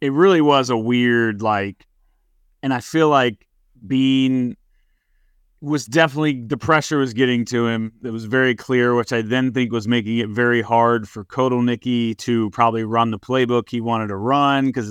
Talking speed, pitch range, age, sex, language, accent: 175 wpm, 115-145 Hz, 30-49, male, English, American